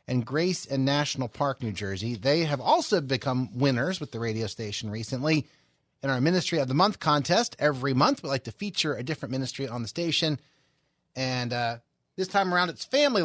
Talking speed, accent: 195 wpm, American